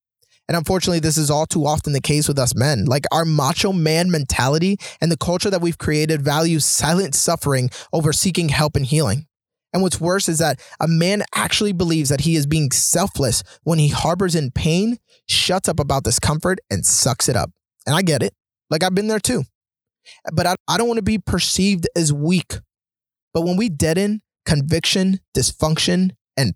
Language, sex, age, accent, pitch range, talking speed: English, male, 20-39, American, 140-180 Hz, 190 wpm